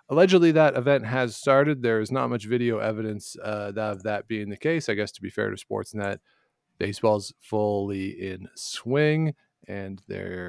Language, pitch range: English, 100-130 Hz